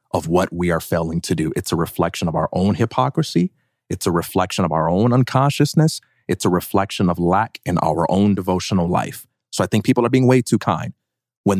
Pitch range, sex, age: 90-115 Hz, male, 30-49